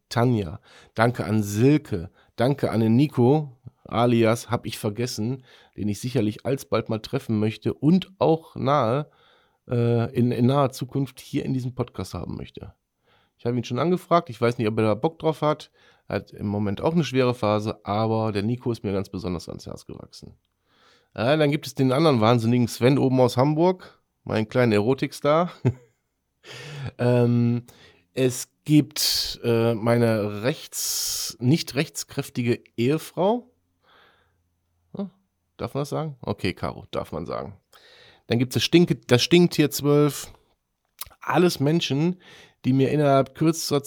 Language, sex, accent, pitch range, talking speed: German, male, German, 110-140 Hz, 150 wpm